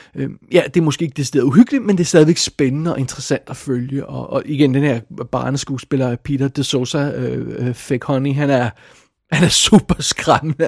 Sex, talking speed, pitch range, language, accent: male, 195 wpm, 135-165 Hz, Danish, native